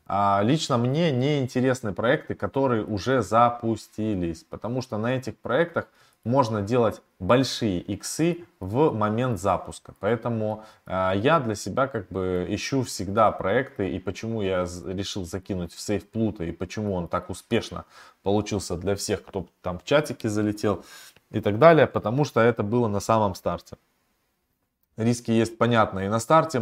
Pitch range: 100-120 Hz